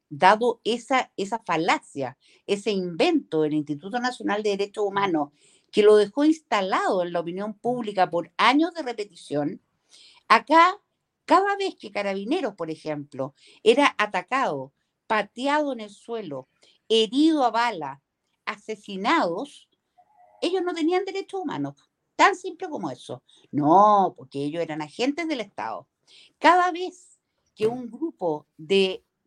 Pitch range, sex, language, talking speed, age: 175-260 Hz, female, Spanish, 130 wpm, 50-69